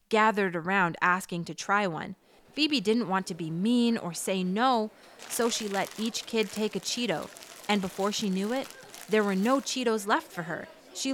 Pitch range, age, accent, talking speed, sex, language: 190-245 Hz, 20-39, American, 195 wpm, female, English